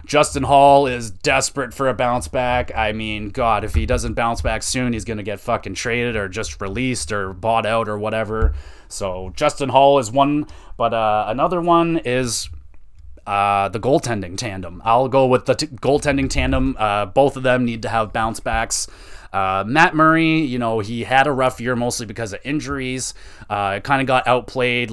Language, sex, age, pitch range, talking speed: English, male, 30-49, 110-130 Hz, 190 wpm